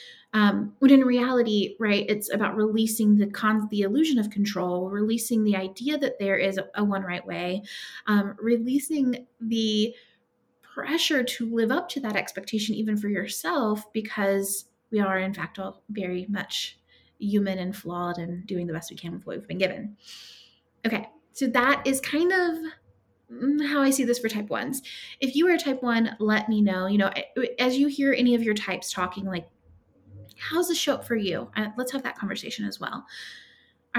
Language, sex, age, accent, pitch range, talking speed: English, female, 20-39, American, 205-270 Hz, 190 wpm